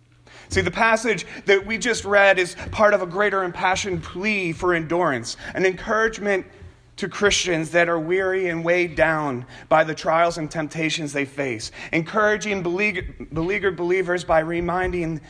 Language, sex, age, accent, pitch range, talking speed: English, male, 30-49, American, 145-195 Hz, 155 wpm